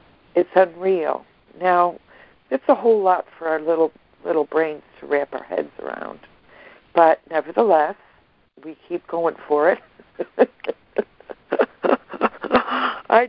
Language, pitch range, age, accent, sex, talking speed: English, 160-195 Hz, 60-79, American, female, 115 wpm